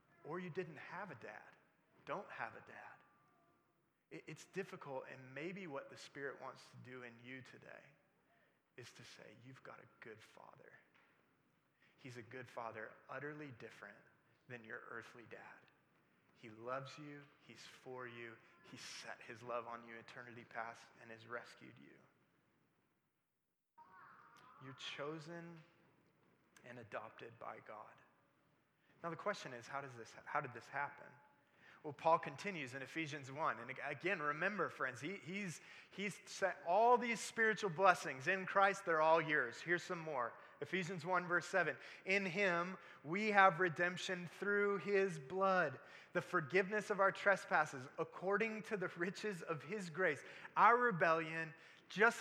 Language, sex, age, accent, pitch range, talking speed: English, male, 30-49, American, 135-190 Hz, 150 wpm